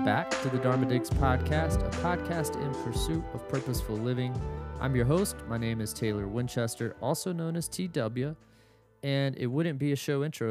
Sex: male